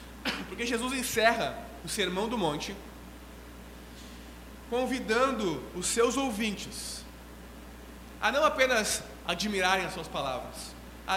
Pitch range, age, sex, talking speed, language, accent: 145-235 Hz, 20-39, male, 100 wpm, Portuguese, Brazilian